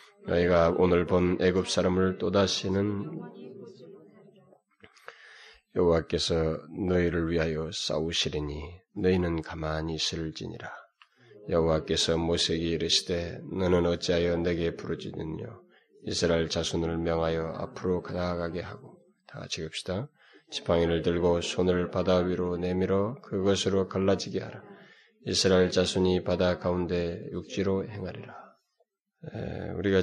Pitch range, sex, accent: 85-95 Hz, male, native